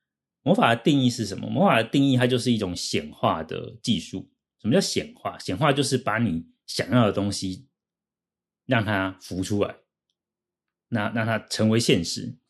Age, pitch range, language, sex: 30-49, 95-130 Hz, Chinese, male